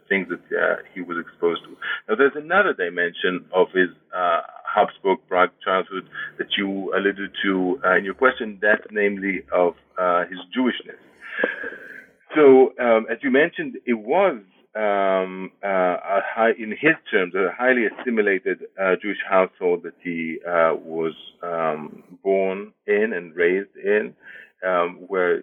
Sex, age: male, 50-69